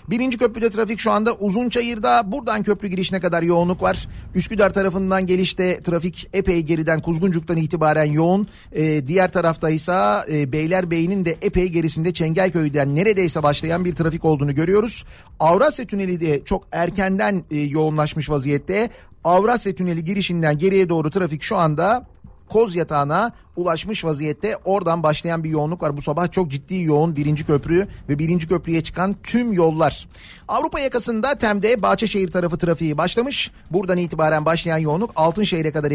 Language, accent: Turkish, native